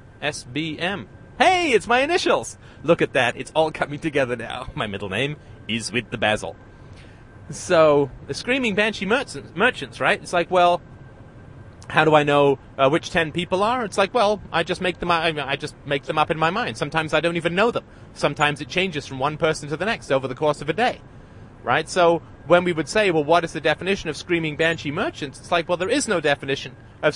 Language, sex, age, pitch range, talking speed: English, male, 30-49, 125-175 Hz, 225 wpm